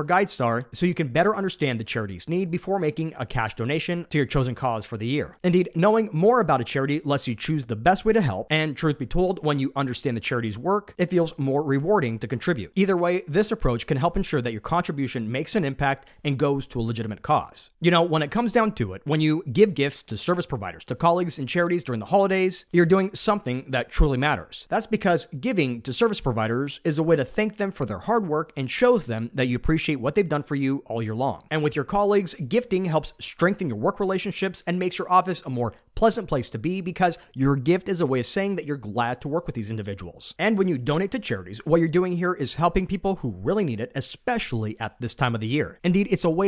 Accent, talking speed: American, 250 wpm